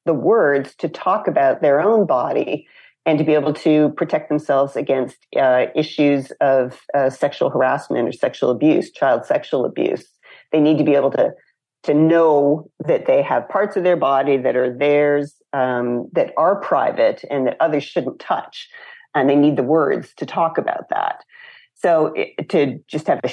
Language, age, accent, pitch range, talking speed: English, 40-59, American, 135-165 Hz, 180 wpm